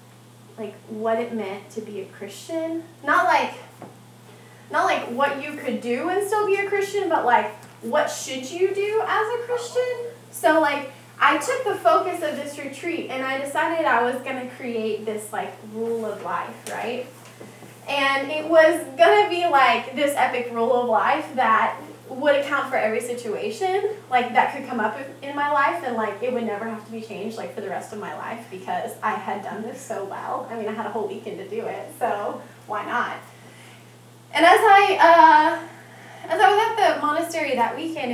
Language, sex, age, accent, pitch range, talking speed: English, female, 10-29, American, 230-330 Hz, 200 wpm